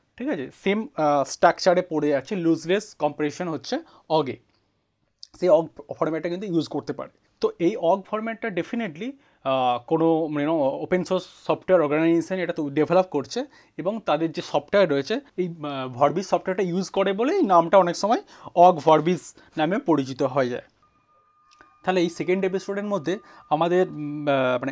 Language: Bengali